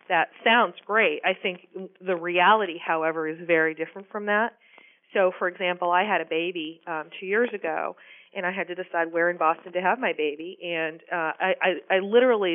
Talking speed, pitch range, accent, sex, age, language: 200 wpm, 165-195 Hz, American, female, 40-59, English